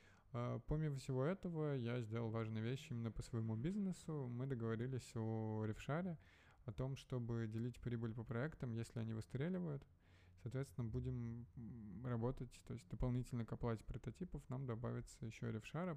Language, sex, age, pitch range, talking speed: Russian, male, 20-39, 115-130 Hz, 145 wpm